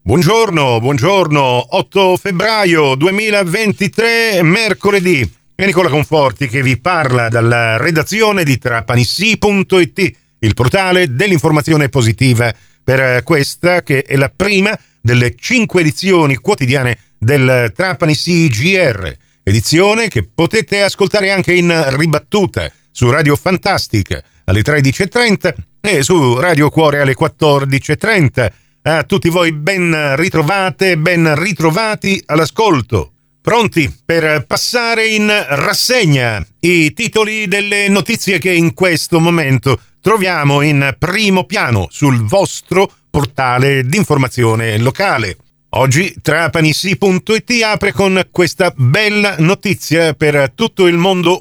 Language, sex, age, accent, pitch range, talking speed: Italian, male, 40-59, native, 135-185 Hz, 110 wpm